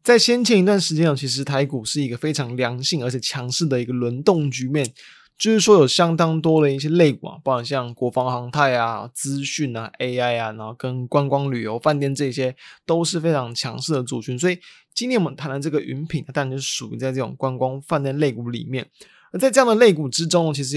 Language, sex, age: Chinese, male, 20-39